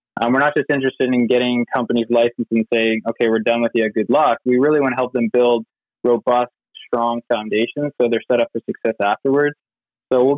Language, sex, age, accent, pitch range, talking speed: English, male, 20-39, American, 115-125 Hz, 215 wpm